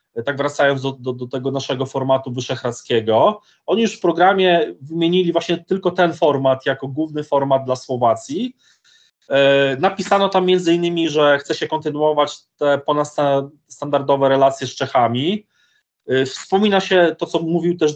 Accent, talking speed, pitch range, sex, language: native, 140 wpm, 140-175 Hz, male, Polish